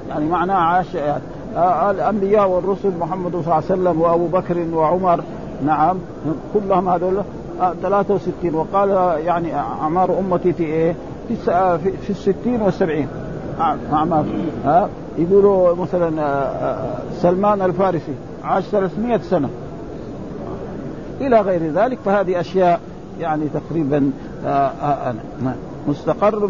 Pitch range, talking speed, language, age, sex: 175-210 Hz, 115 wpm, Arabic, 50-69, male